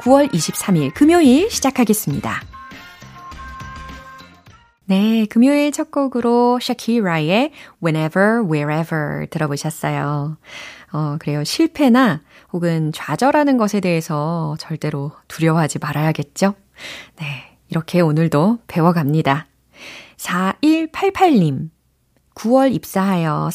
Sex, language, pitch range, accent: female, Korean, 155-240 Hz, native